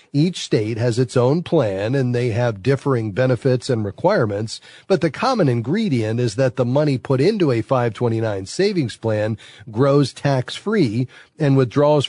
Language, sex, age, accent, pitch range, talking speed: English, male, 40-59, American, 115-145 Hz, 155 wpm